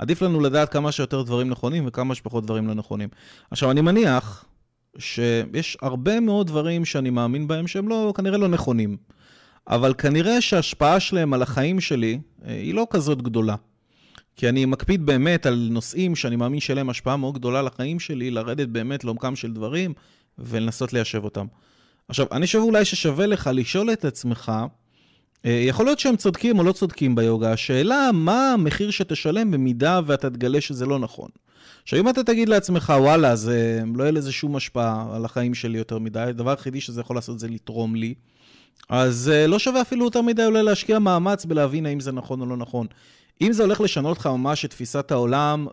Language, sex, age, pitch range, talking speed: Hebrew, male, 30-49, 120-170 Hz, 180 wpm